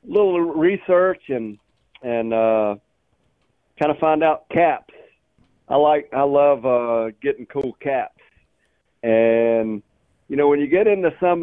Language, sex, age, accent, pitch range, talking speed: English, male, 50-69, American, 120-165 Hz, 135 wpm